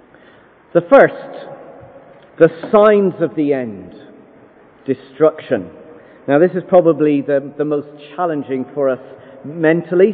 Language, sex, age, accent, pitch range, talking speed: English, male, 40-59, British, 150-230 Hz, 110 wpm